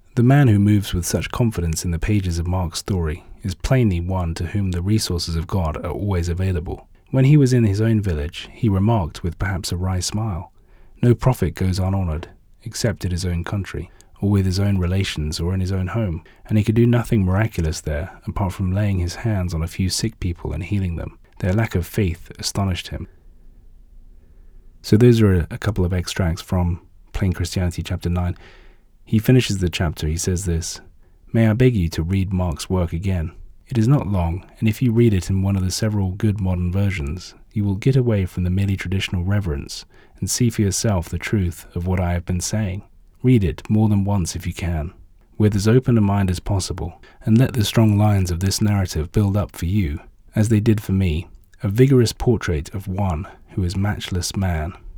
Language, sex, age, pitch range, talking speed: English, male, 30-49, 85-105 Hz, 210 wpm